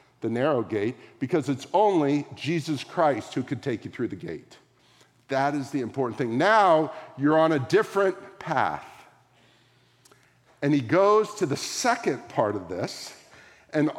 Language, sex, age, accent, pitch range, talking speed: English, male, 50-69, American, 125-185 Hz, 155 wpm